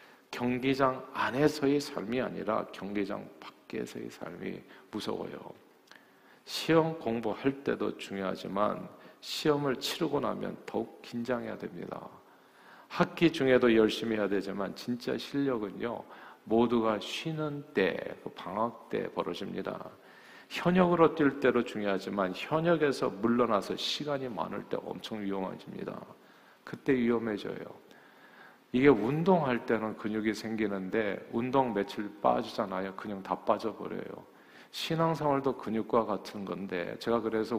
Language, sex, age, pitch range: Korean, male, 40-59, 105-135 Hz